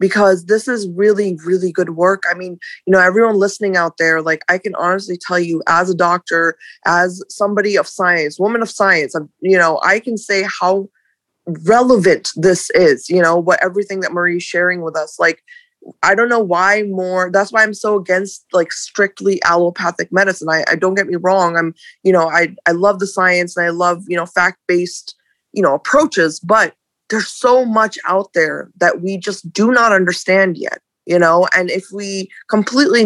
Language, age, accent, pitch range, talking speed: English, 20-39, American, 175-200 Hz, 195 wpm